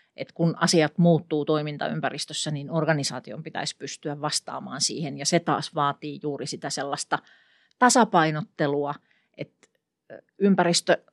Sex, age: female, 40-59